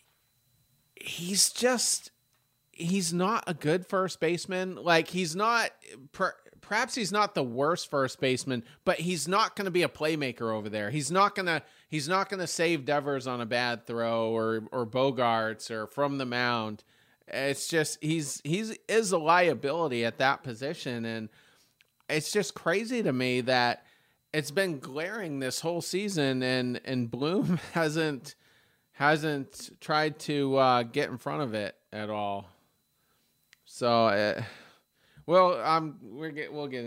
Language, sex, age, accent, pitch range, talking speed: English, male, 30-49, American, 125-170 Hz, 150 wpm